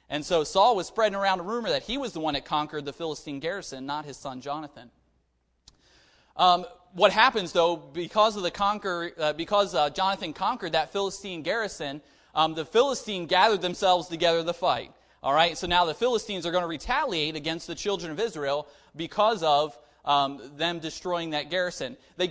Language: English